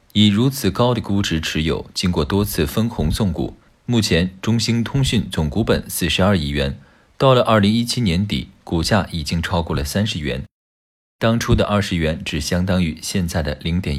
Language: Chinese